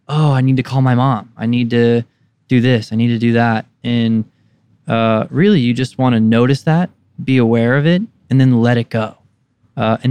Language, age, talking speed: English, 20-39, 220 wpm